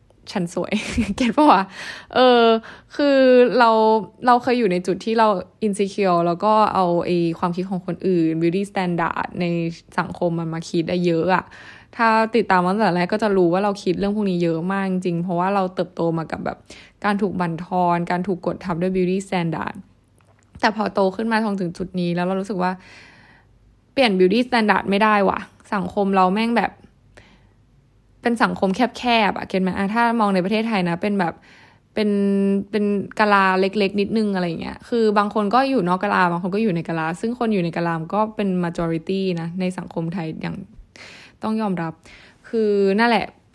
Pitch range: 180-220 Hz